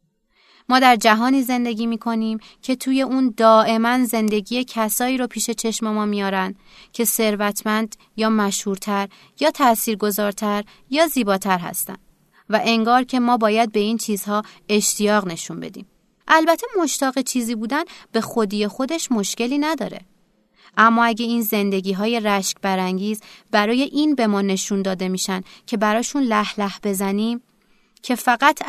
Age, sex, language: 30-49, female, Persian